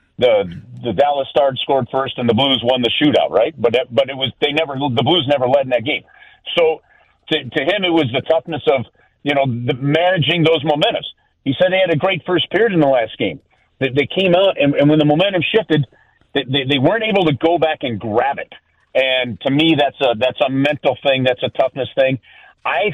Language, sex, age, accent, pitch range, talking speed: English, male, 50-69, American, 125-160 Hz, 230 wpm